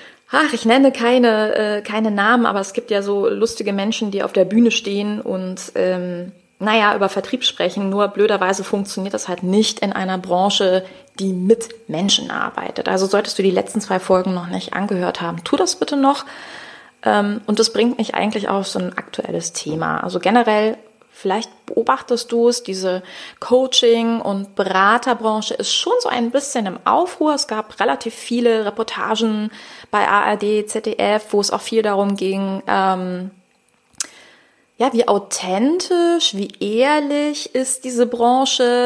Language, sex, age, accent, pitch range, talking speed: German, female, 20-39, German, 195-245 Hz, 160 wpm